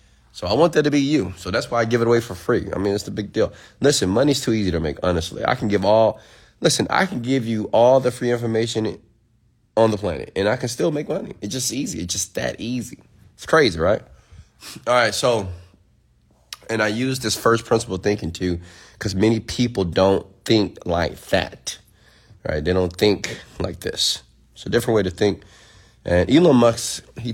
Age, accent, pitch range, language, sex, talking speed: 30-49, American, 85-115 Hz, English, male, 210 wpm